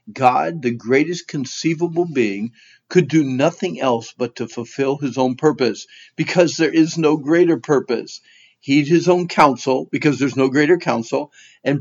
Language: English